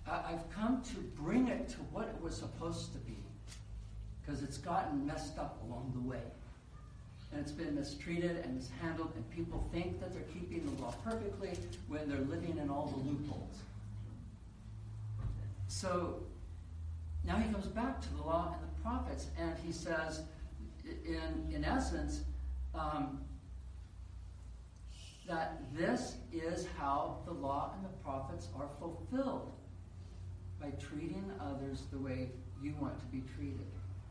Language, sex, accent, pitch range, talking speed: English, male, American, 95-155 Hz, 145 wpm